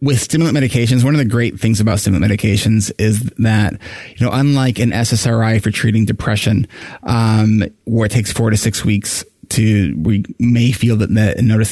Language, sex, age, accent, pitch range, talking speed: English, male, 20-39, American, 105-130 Hz, 190 wpm